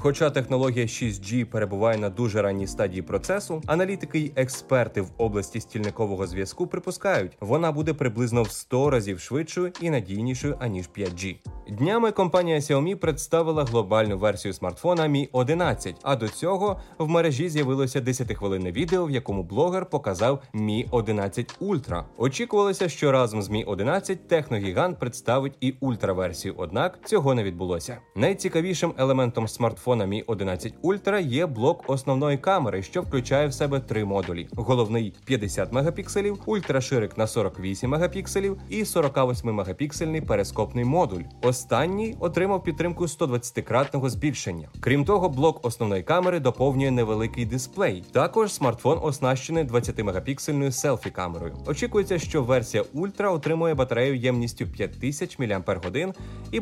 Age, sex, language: 20-39, male, Ukrainian